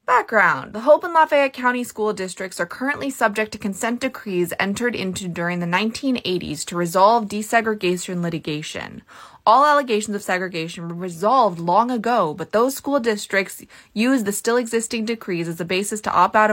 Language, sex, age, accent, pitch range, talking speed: English, female, 20-39, American, 180-245 Hz, 165 wpm